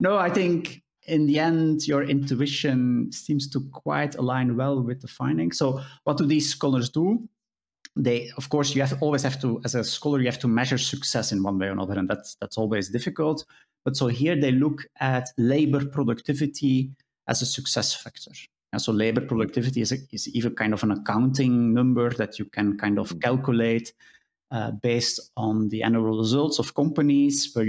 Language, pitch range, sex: English, 115-145 Hz, male